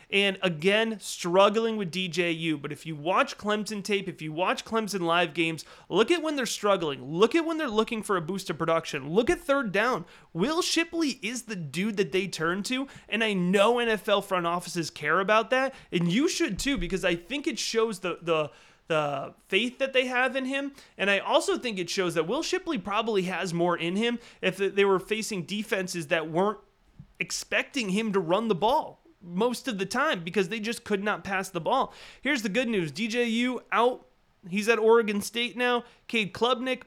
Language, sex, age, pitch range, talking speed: English, male, 30-49, 185-240 Hz, 200 wpm